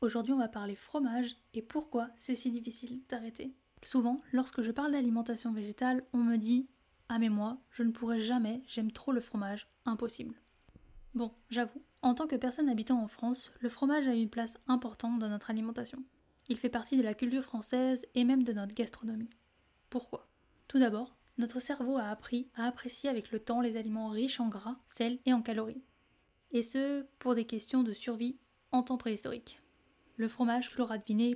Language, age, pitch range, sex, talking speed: French, 10-29, 230-255 Hz, female, 190 wpm